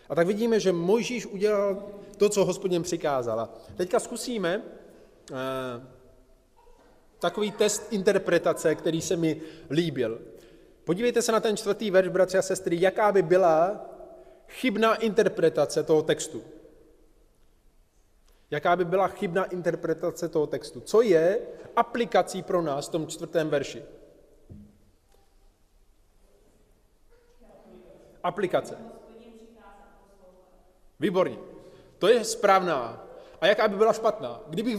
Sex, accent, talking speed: male, native, 110 wpm